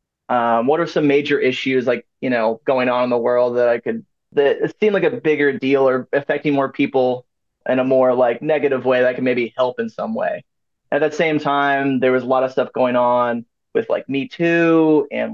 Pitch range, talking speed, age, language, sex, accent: 130-170 Hz, 225 wpm, 20-39, English, male, American